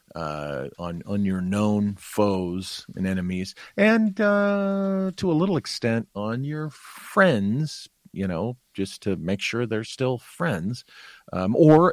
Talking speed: 140 wpm